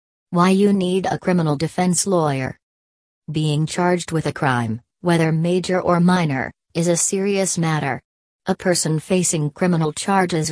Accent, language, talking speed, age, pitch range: American, English, 145 wpm, 40-59, 145-175 Hz